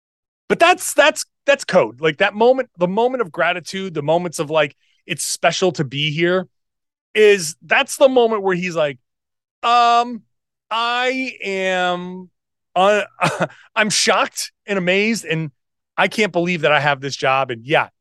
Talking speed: 155 wpm